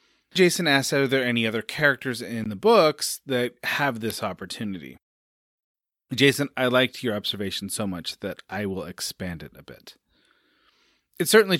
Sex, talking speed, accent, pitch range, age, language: male, 155 wpm, American, 105-155 Hz, 30-49, English